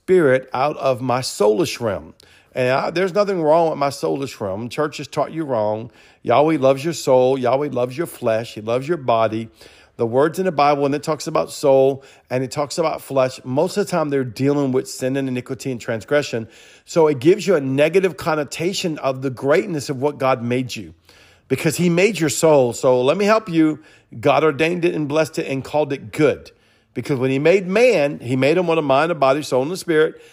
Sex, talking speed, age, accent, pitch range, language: male, 220 wpm, 50-69, American, 125-160 Hz, English